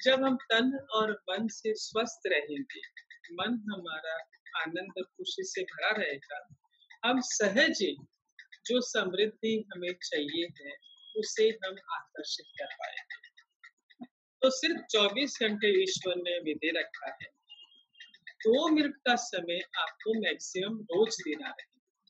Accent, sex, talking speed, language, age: native, female, 100 wpm, Hindi, 50-69